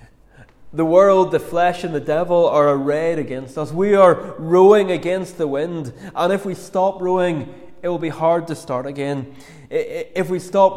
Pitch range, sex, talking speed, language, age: 135-170 Hz, male, 180 wpm, English, 30-49